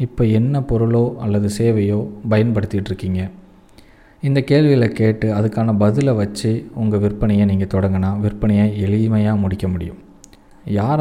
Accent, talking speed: native, 120 wpm